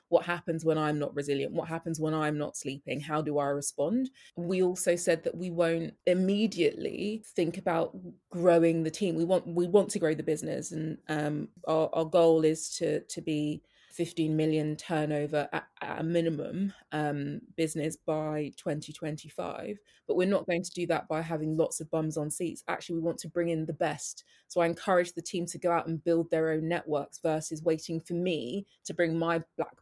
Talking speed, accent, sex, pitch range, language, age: 205 wpm, British, female, 160-185 Hz, English, 20-39